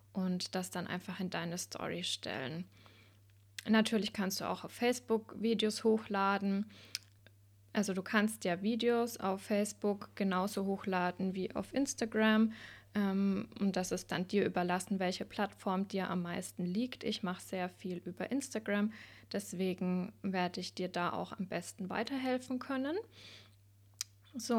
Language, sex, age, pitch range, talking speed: German, female, 20-39, 180-220 Hz, 140 wpm